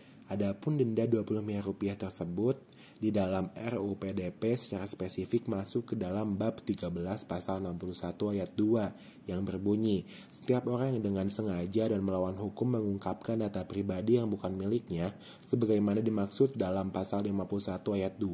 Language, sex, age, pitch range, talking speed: Indonesian, male, 20-39, 95-115 Hz, 135 wpm